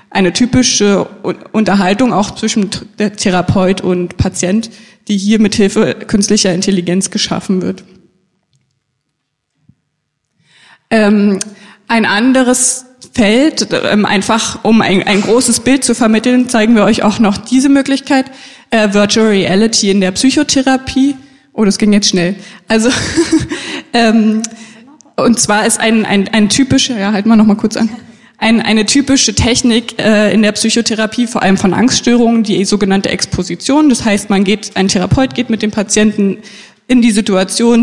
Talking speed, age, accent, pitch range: 145 wpm, 20-39, German, 195-235 Hz